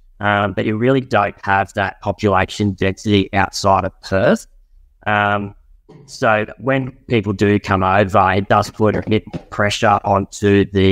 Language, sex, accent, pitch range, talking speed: English, male, Australian, 100-115 Hz, 150 wpm